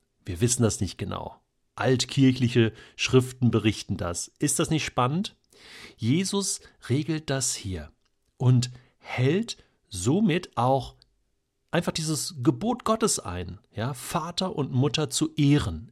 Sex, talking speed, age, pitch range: male, 115 wpm, 40-59, 105-140 Hz